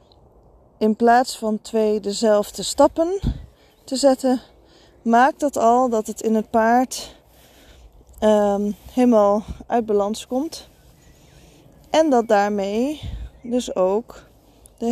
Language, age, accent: Dutch, 20-39, Dutch